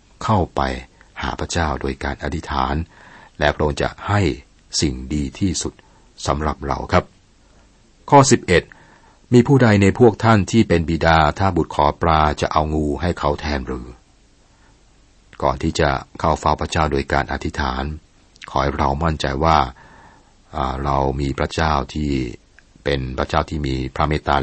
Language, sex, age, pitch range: Thai, male, 60-79, 70-85 Hz